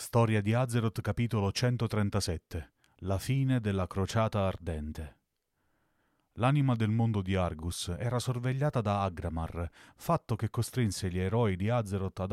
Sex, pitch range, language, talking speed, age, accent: male, 90-115 Hz, Italian, 130 wpm, 30-49, native